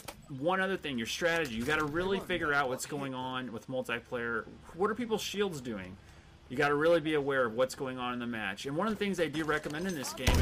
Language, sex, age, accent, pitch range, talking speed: English, male, 30-49, American, 115-155 Hz, 260 wpm